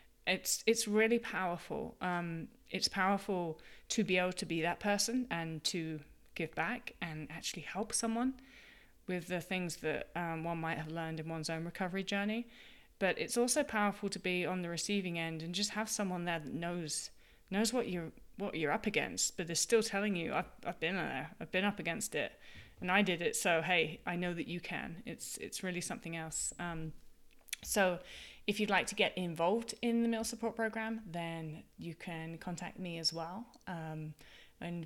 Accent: British